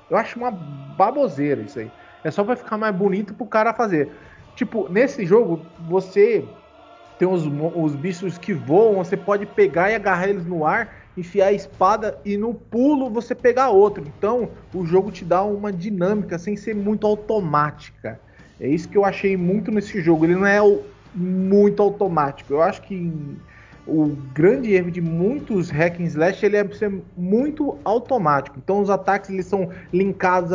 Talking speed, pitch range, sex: 170 wpm, 165-205 Hz, male